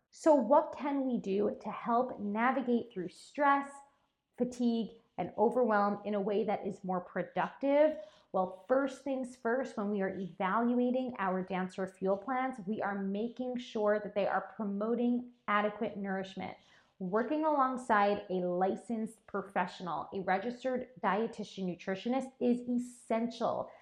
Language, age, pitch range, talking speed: English, 20-39, 200-260 Hz, 135 wpm